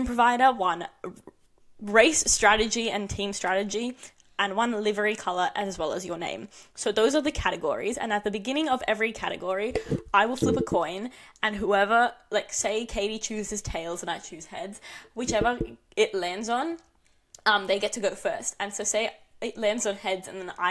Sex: female